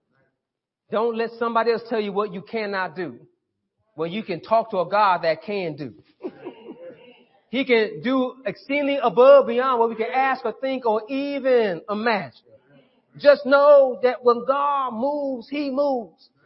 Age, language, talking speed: 40-59, English, 155 wpm